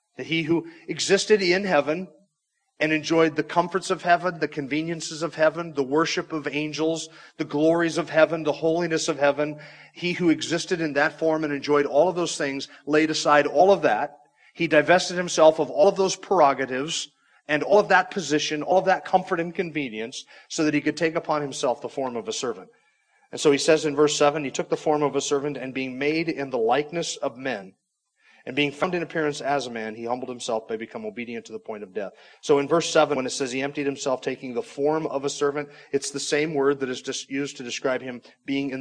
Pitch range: 135-160 Hz